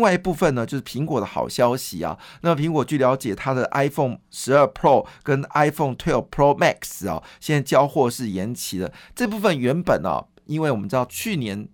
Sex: male